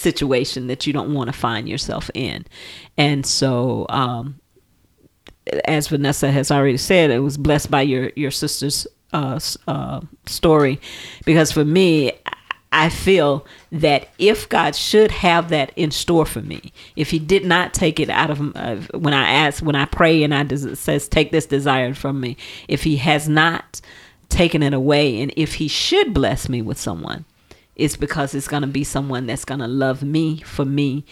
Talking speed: 180 wpm